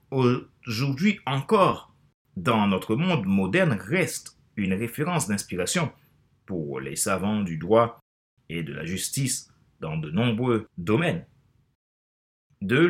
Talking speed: 110 wpm